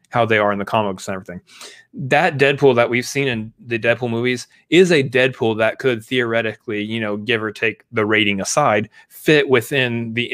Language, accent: English, American